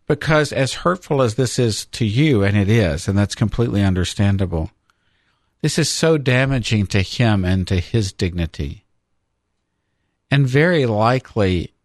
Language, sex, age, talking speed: English, male, 50-69, 140 wpm